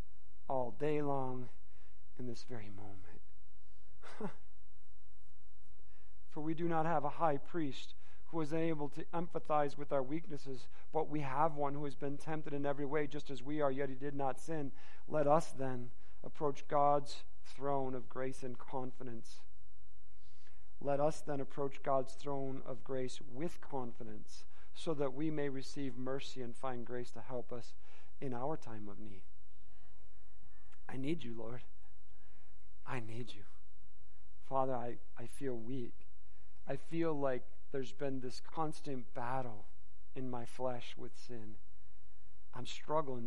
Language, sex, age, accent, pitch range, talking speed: English, male, 40-59, American, 95-145 Hz, 150 wpm